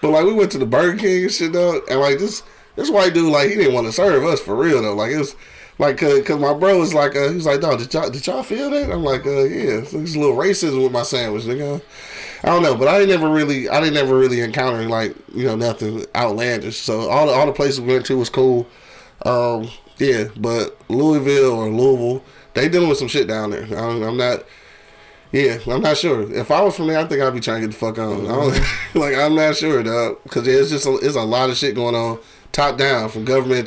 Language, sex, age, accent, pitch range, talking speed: English, male, 20-39, American, 120-160 Hz, 265 wpm